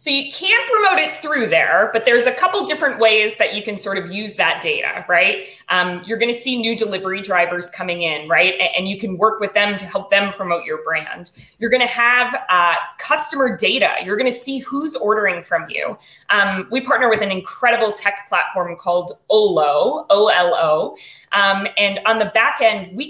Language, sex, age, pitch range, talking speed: English, female, 20-39, 190-265 Hz, 200 wpm